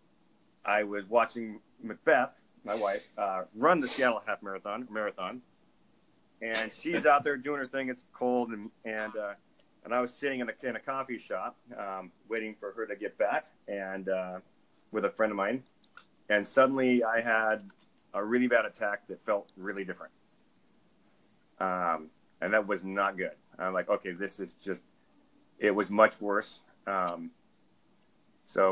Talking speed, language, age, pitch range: 165 wpm, English, 40-59, 100-115 Hz